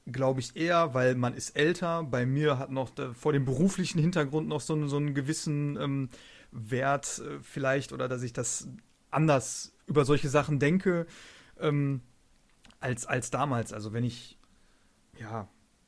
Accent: German